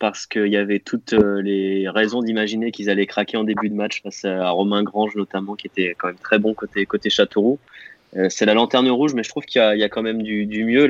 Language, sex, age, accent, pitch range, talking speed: French, male, 20-39, French, 100-130 Hz, 250 wpm